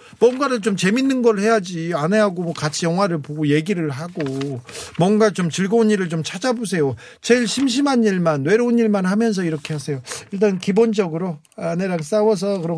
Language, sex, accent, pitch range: Korean, male, native, 145-210 Hz